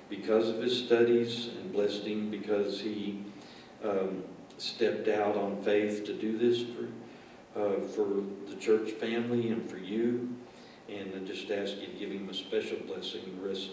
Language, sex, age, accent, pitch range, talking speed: English, male, 50-69, American, 95-110 Hz, 170 wpm